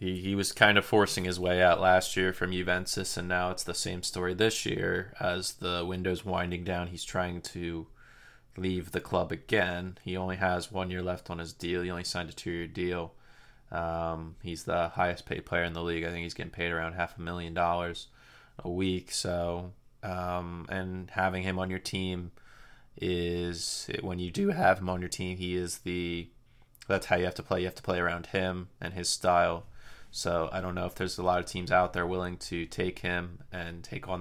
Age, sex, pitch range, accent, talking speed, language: 20-39, male, 85-95 Hz, American, 210 wpm, English